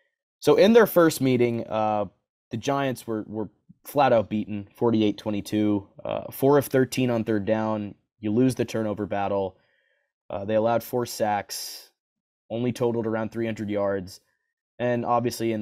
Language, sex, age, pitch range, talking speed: English, male, 20-39, 105-145 Hz, 145 wpm